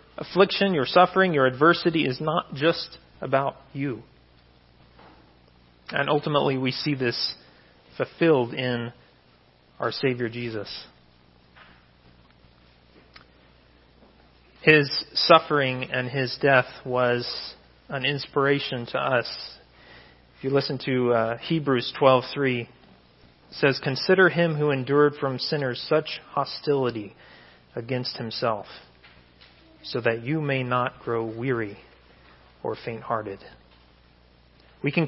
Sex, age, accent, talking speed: male, 40-59, American, 105 wpm